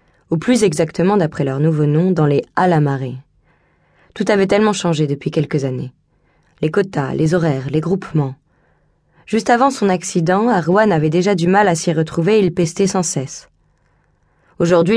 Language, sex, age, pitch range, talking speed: French, female, 20-39, 155-195 Hz, 170 wpm